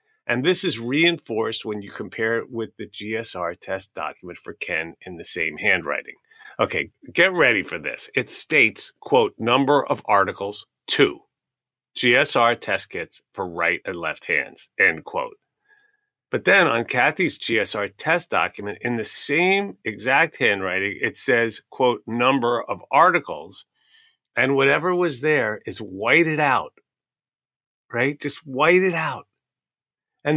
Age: 40-59